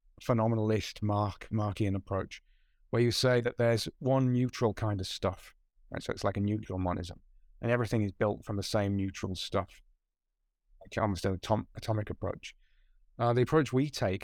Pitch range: 95-115 Hz